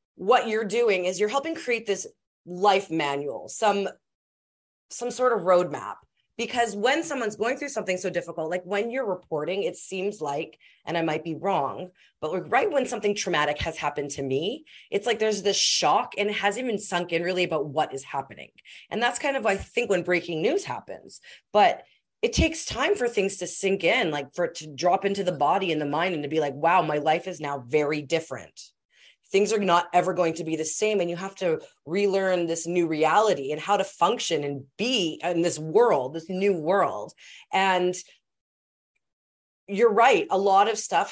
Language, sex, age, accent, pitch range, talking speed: English, female, 30-49, American, 160-205 Hz, 200 wpm